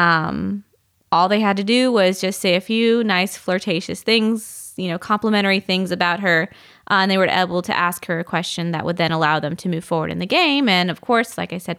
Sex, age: female, 20-39